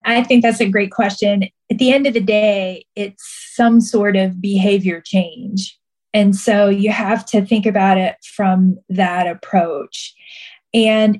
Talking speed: 160 wpm